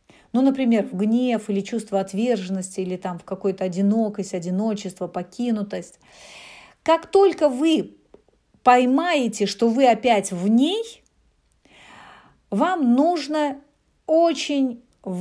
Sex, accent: female, native